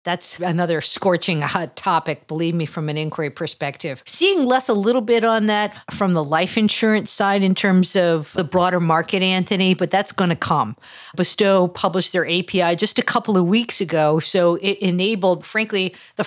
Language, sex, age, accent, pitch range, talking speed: English, female, 50-69, American, 165-205 Hz, 185 wpm